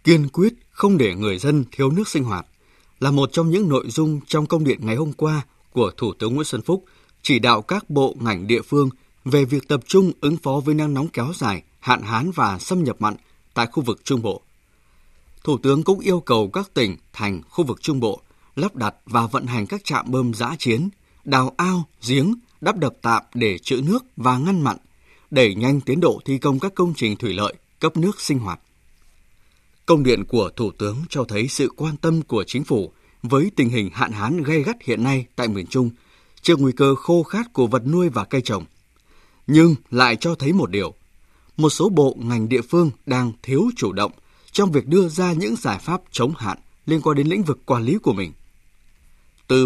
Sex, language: male, Vietnamese